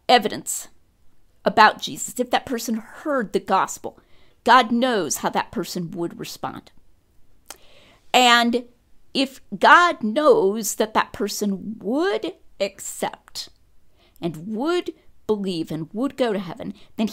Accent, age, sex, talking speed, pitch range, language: American, 50-69, female, 120 wpm, 180-235 Hz, English